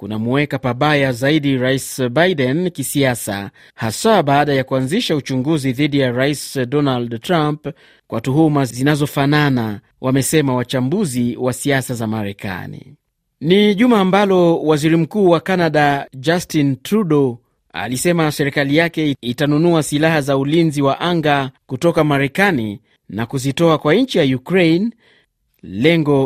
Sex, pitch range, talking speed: male, 130-165 Hz, 120 wpm